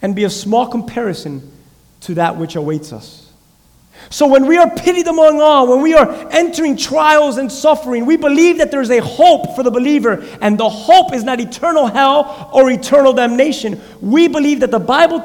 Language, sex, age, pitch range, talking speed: English, male, 30-49, 195-270 Hz, 195 wpm